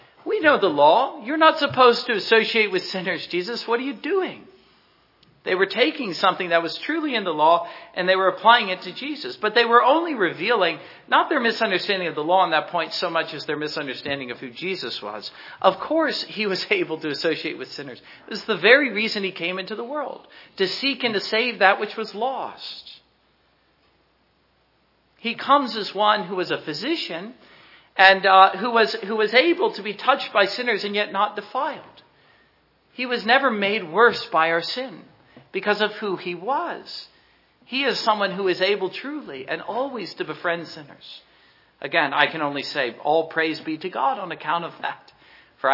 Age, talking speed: 50-69, 195 wpm